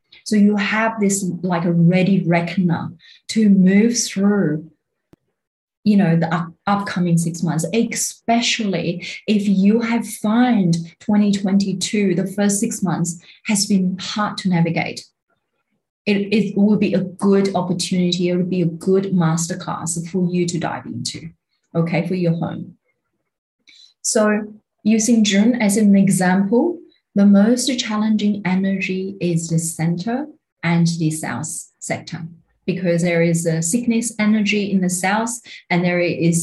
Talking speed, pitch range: 135 wpm, 170-210 Hz